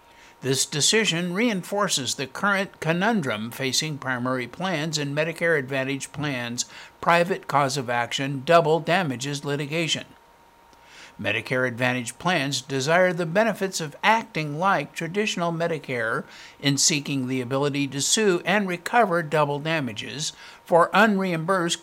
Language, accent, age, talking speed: English, American, 60-79, 120 wpm